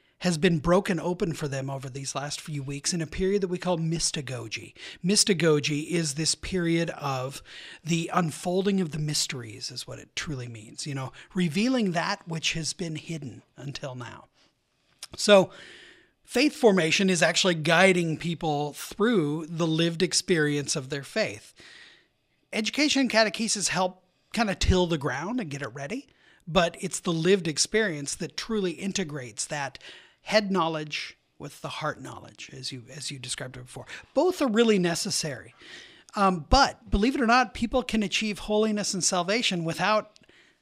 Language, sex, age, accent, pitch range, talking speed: English, male, 30-49, American, 150-205 Hz, 160 wpm